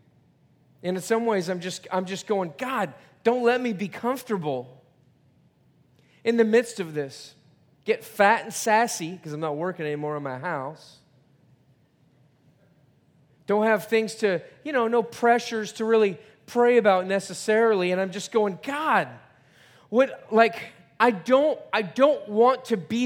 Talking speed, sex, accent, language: 155 wpm, male, American, English